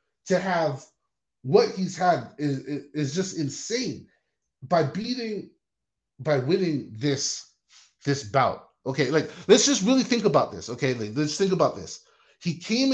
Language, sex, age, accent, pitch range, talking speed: English, male, 30-49, American, 140-195 Hz, 150 wpm